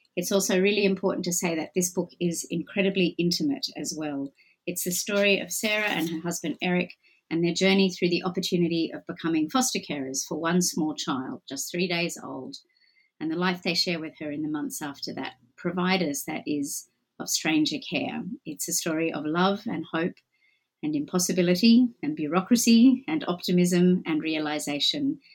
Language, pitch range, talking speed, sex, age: English, 165-225 Hz, 175 wpm, female, 40-59